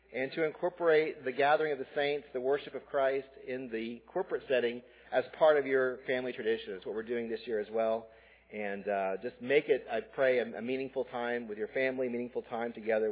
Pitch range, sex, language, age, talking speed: 115-175 Hz, male, English, 40-59, 215 wpm